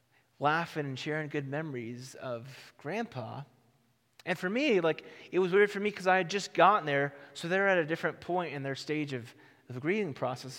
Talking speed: 205 wpm